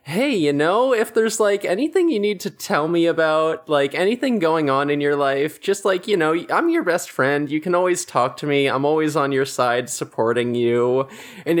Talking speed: 215 wpm